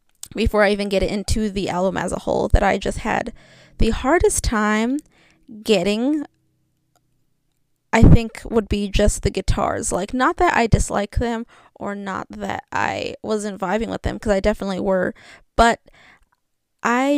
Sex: female